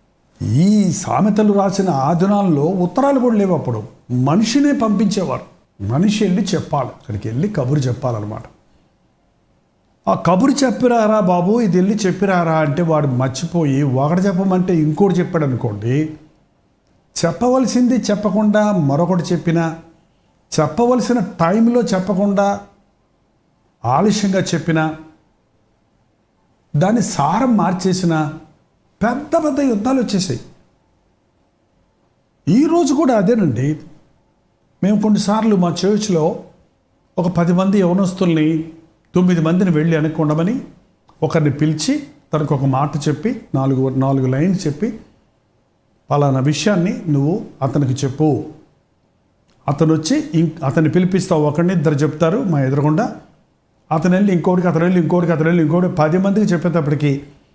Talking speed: 100 wpm